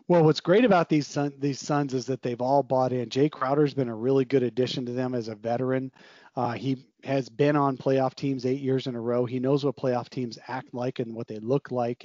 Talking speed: 250 wpm